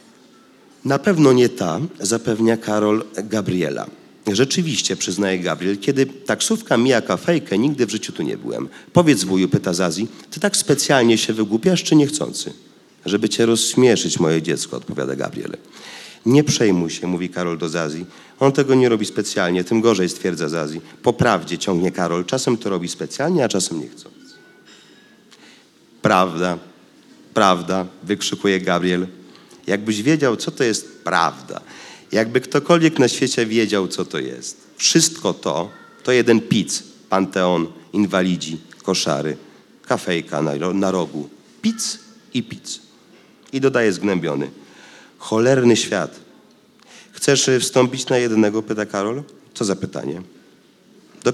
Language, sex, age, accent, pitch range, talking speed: Polish, male, 40-59, native, 90-130 Hz, 130 wpm